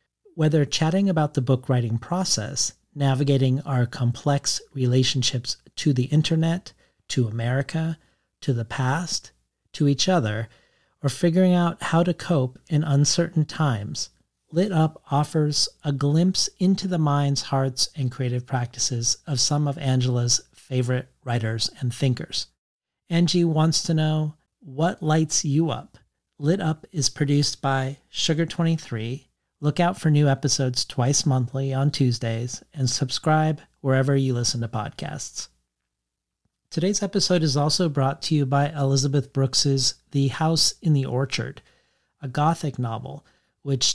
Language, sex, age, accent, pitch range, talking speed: English, male, 40-59, American, 130-155 Hz, 135 wpm